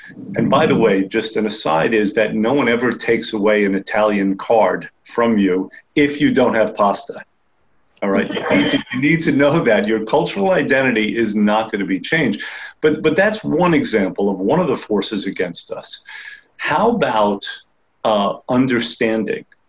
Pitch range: 105-135 Hz